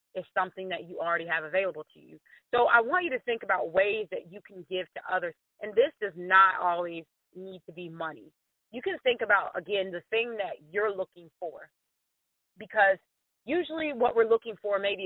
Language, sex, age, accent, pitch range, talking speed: English, female, 30-49, American, 175-215 Hz, 200 wpm